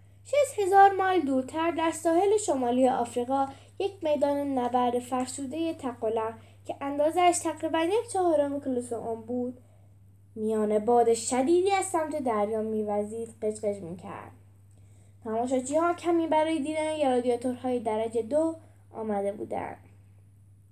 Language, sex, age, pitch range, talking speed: Persian, female, 10-29, 190-295 Hz, 115 wpm